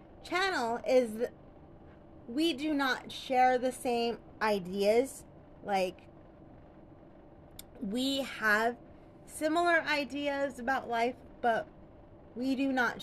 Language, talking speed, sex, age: English, 90 wpm, female, 20-39